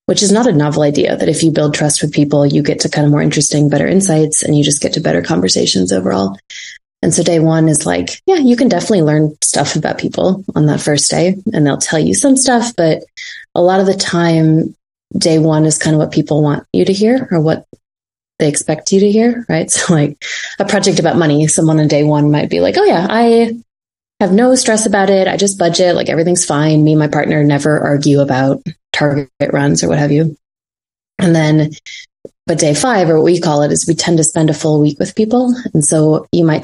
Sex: female